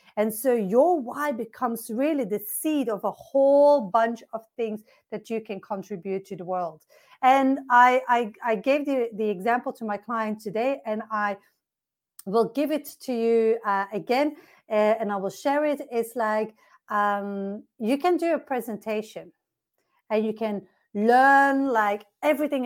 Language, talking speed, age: English, 165 wpm, 40-59